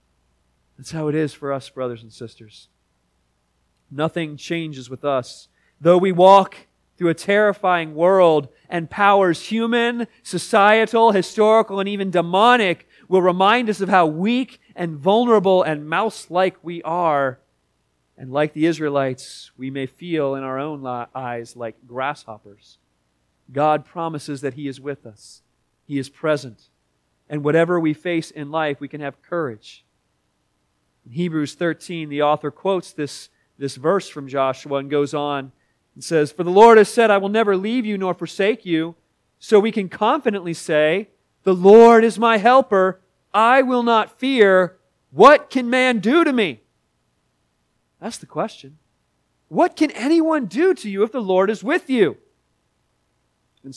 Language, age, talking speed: English, 40-59, 155 wpm